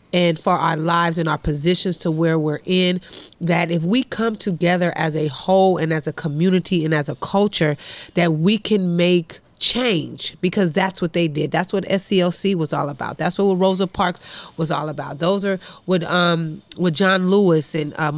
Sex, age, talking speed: female, 30-49, 195 wpm